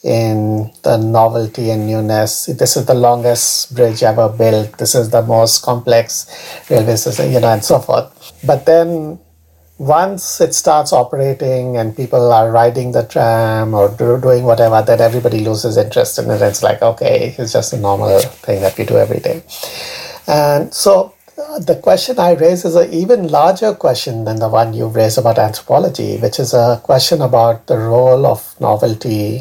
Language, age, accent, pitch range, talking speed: English, 60-79, Indian, 110-140 Hz, 175 wpm